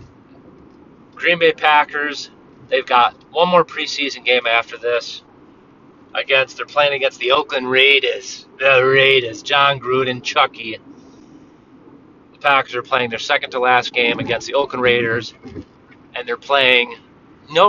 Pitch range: 120-165 Hz